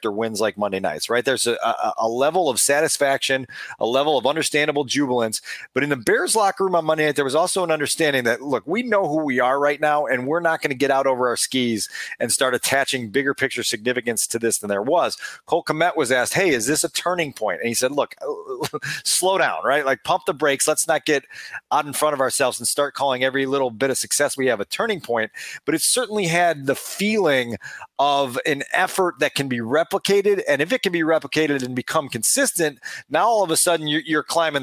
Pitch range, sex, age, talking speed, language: 130-160 Hz, male, 30-49, 225 wpm, English